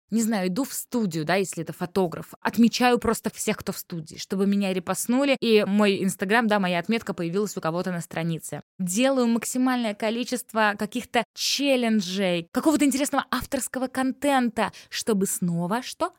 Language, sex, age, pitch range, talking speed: Russian, female, 20-39, 185-235 Hz, 150 wpm